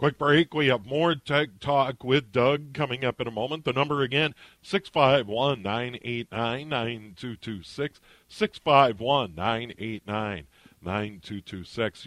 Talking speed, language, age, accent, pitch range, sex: 95 wpm, English, 50-69, American, 115-150 Hz, male